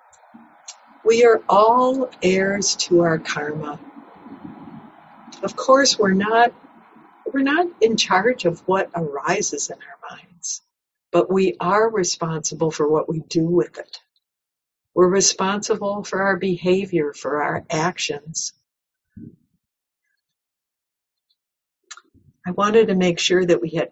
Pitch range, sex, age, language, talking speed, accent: 160-195 Hz, female, 60-79, English, 120 wpm, American